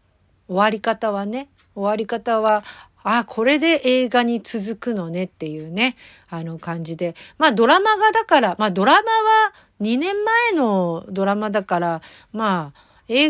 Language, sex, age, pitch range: Japanese, female, 50-69, 175-260 Hz